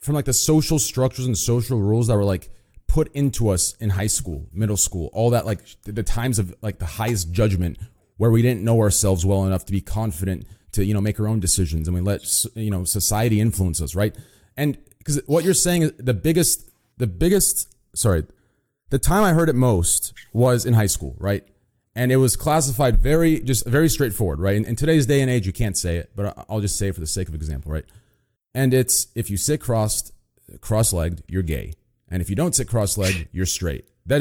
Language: English